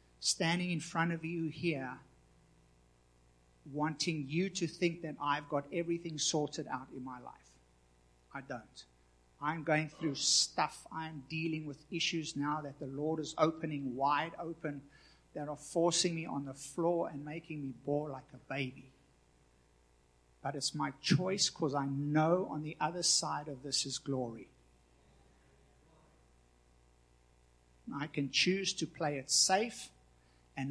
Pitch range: 125-170 Hz